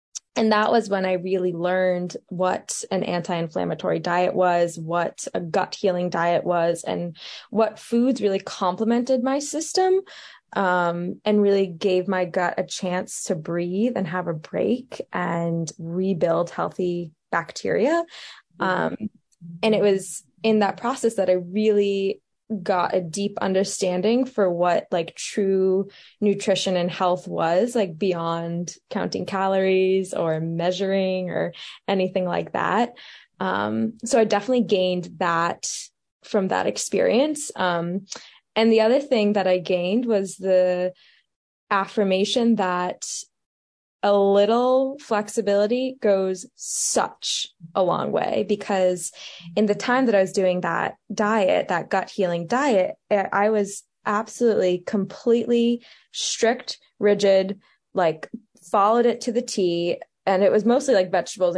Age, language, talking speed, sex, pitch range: 20-39, English, 135 wpm, female, 180-220 Hz